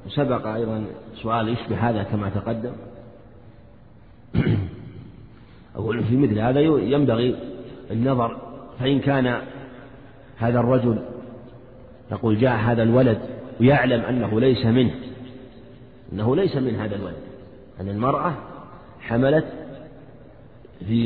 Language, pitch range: Arabic, 115-135 Hz